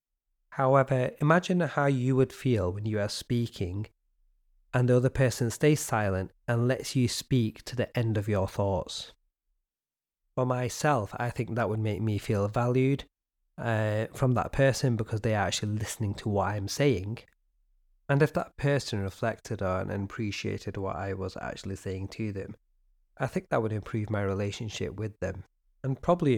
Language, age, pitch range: English, 30-49, 100-130 Hz